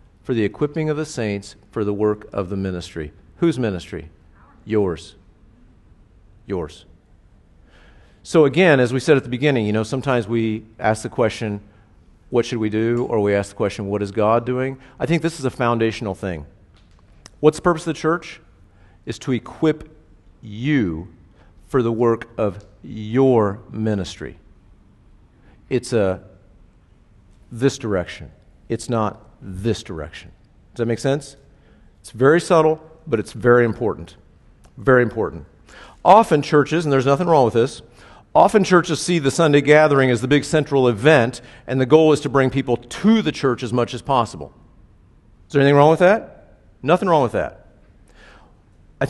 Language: English